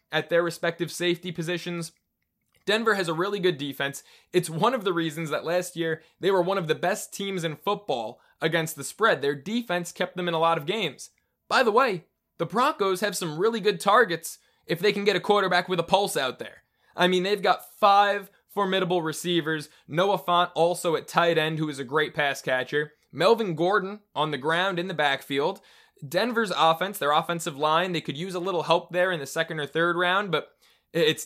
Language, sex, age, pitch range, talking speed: English, male, 20-39, 155-190 Hz, 205 wpm